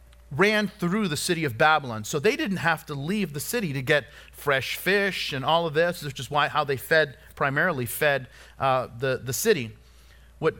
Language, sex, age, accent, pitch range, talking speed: English, male, 40-59, American, 120-165 Hz, 200 wpm